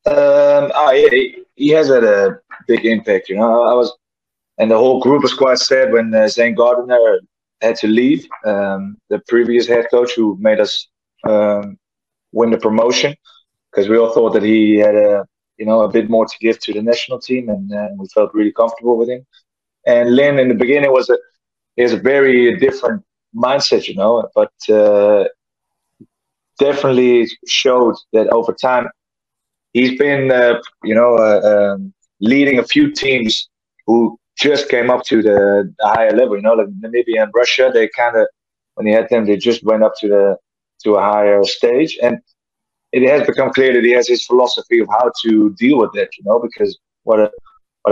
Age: 20-39